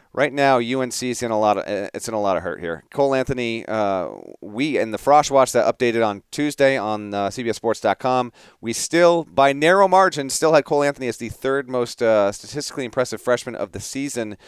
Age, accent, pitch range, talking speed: 40-59, American, 120-160 Hz, 205 wpm